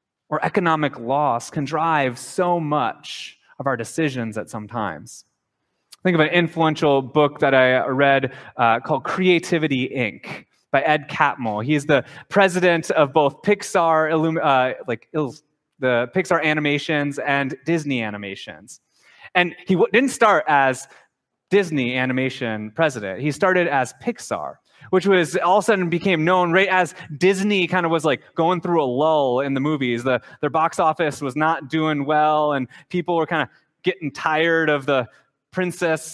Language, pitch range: English, 135-175 Hz